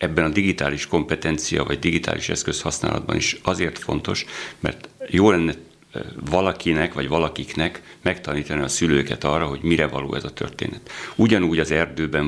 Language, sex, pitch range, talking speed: Hungarian, male, 75-85 Hz, 145 wpm